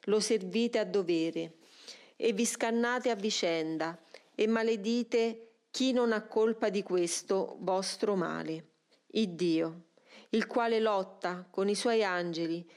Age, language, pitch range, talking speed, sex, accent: 40-59, Italian, 180-230 Hz, 130 wpm, female, native